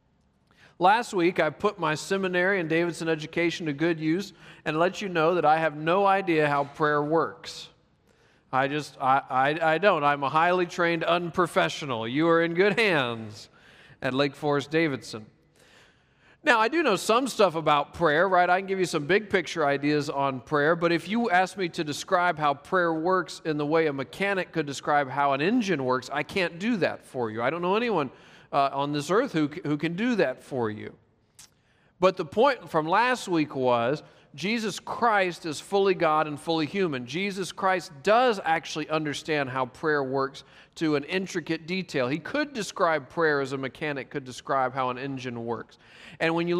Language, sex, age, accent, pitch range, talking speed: English, male, 40-59, American, 145-185 Hz, 190 wpm